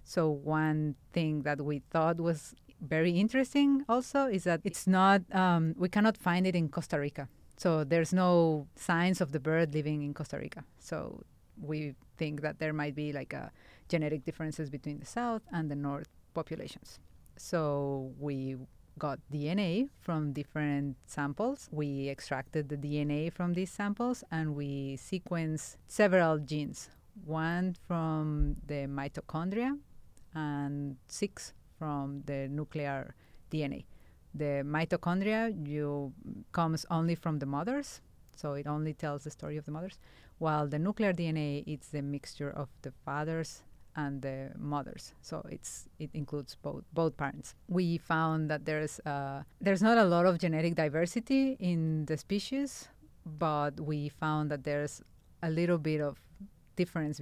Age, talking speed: 30-49, 150 wpm